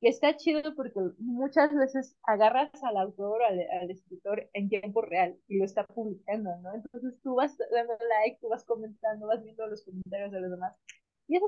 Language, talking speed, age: Spanish, 195 wpm, 20-39